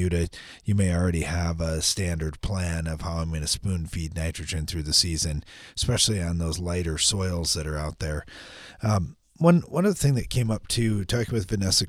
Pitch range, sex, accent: 85-110 Hz, male, American